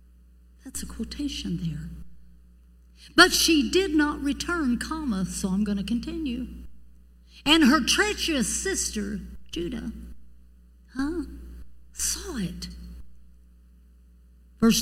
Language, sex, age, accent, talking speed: English, female, 60-79, American, 95 wpm